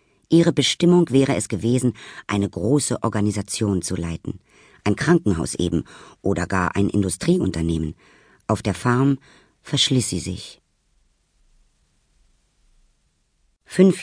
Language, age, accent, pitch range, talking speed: German, 50-69, German, 105-130 Hz, 105 wpm